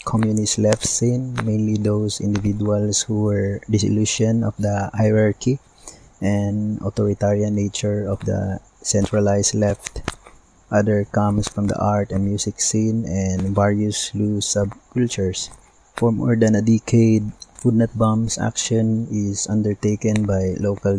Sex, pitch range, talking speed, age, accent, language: male, 100-110 Hz, 125 wpm, 20-39, Filipino, English